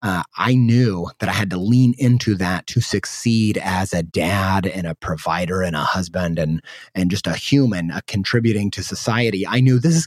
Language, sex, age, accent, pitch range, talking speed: English, male, 30-49, American, 90-115 Hz, 205 wpm